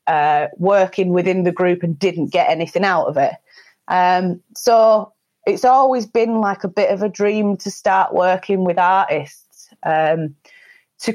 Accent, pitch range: British, 170-200 Hz